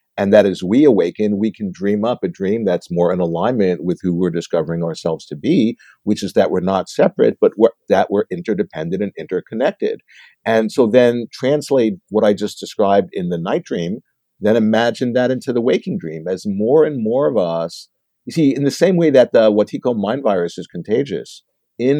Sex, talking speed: male, 205 wpm